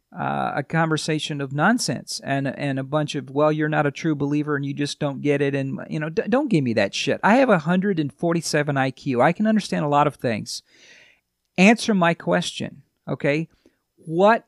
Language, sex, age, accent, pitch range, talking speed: English, male, 50-69, American, 140-170 Hz, 195 wpm